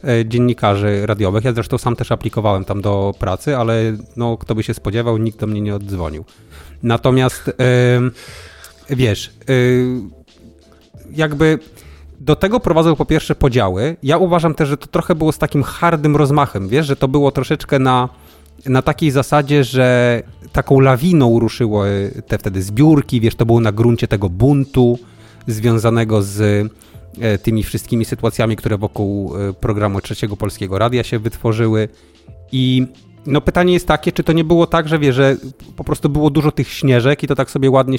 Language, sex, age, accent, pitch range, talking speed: Polish, male, 30-49, native, 110-145 Hz, 160 wpm